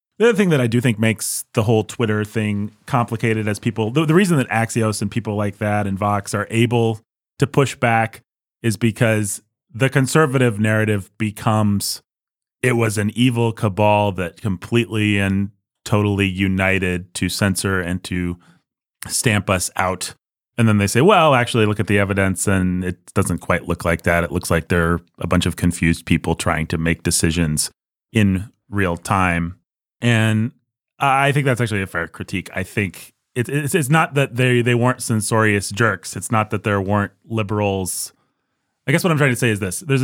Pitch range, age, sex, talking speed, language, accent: 90-115 Hz, 30-49, male, 185 wpm, English, American